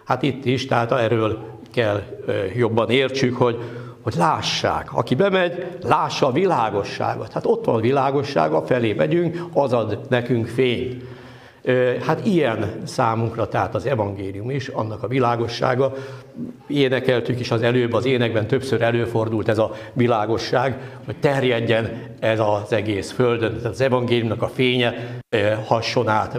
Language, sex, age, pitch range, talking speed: Hungarian, male, 60-79, 110-130 Hz, 135 wpm